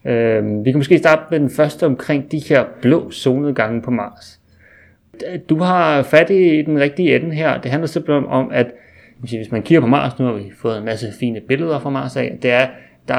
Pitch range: 120-150 Hz